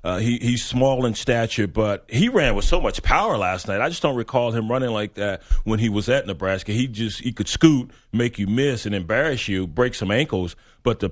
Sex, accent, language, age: male, American, English, 40-59